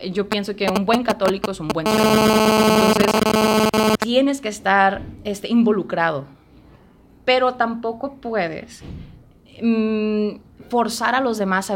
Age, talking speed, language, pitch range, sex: 20-39, 130 wpm, Spanish, 200-220 Hz, female